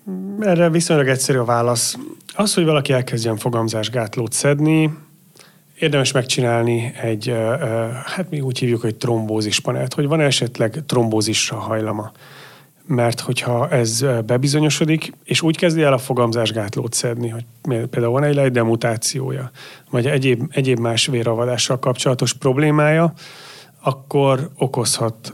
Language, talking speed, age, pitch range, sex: Hungarian, 120 wpm, 30-49, 120-145 Hz, male